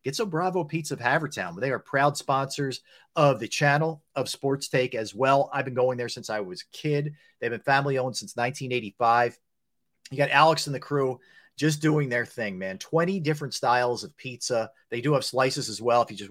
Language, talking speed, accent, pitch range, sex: English, 210 wpm, American, 120-150 Hz, male